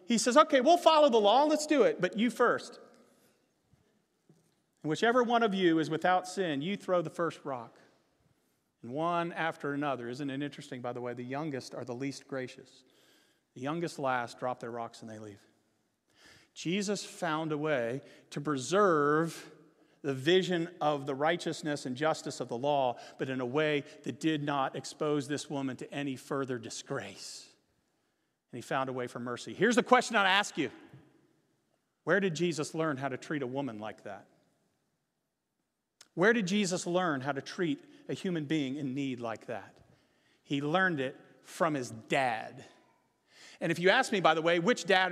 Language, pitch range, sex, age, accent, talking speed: English, 140-205 Hz, male, 40-59, American, 180 wpm